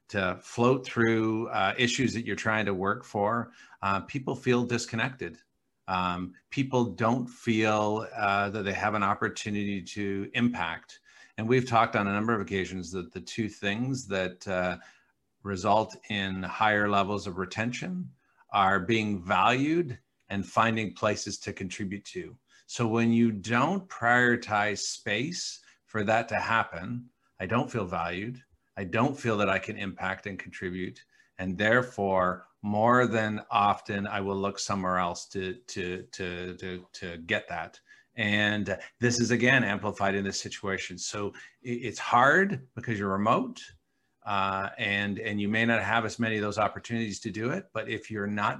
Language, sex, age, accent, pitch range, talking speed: English, male, 50-69, American, 95-115 Hz, 160 wpm